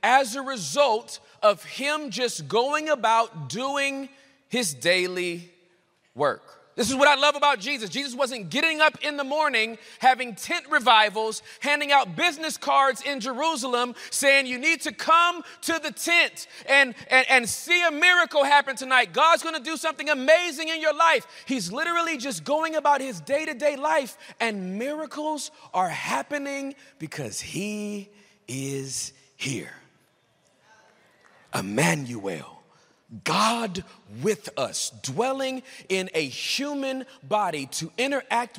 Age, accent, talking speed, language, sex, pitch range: 30-49, American, 135 wpm, English, male, 170-285 Hz